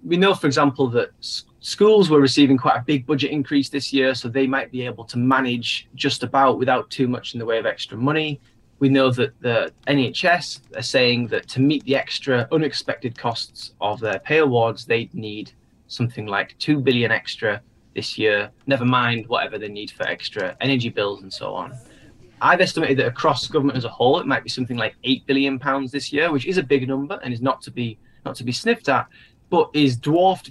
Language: English